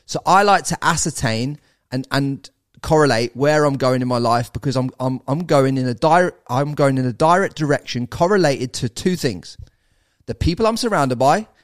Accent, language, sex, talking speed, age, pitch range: British, English, male, 190 wpm, 30-49, 115-155 Hz